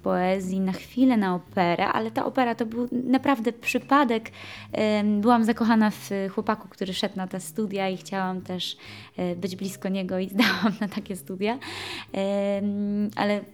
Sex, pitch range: female, 185-225 Hz